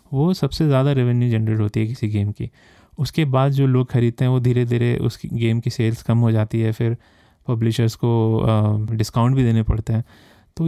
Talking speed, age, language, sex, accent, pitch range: 200 wpm, 20-39, Hindi, male, native, 110-130 Hz